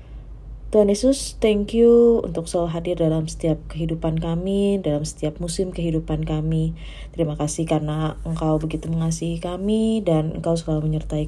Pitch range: 150-170 Hz